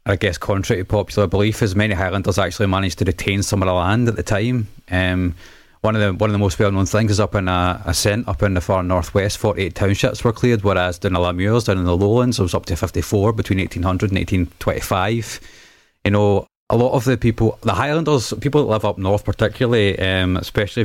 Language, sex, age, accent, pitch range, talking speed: English, male, 30-49, British, 95-115 Hz, 225 wpm